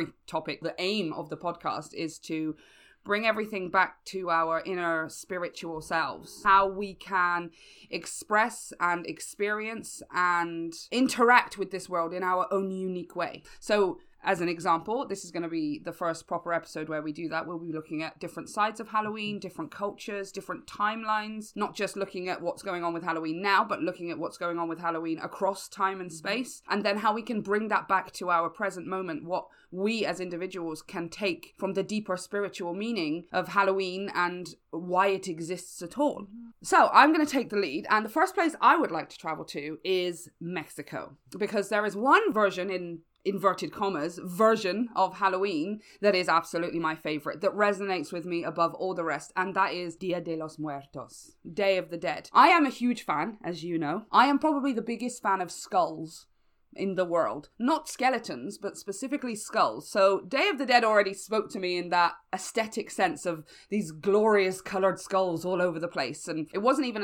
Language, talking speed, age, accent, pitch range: English, 195 wpm, 20-39, British, 170-205 Hz